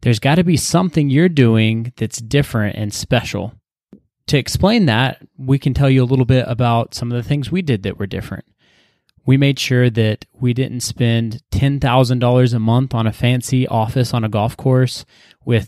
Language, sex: English, male